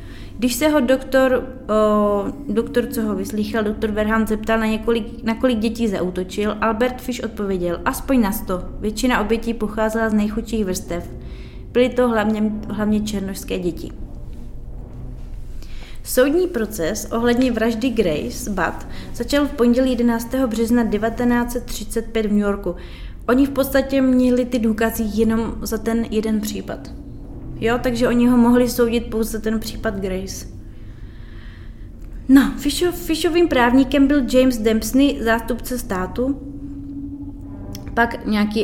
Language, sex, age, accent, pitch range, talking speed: Czech, female, 20-39, native, 210-245 Hz, 130 wpm